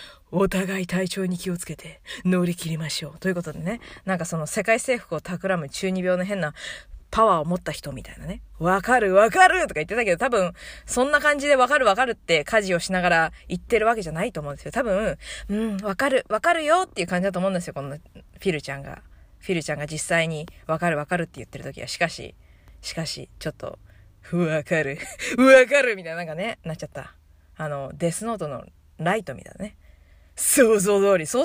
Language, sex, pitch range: Japanese, female, 150-215 Hz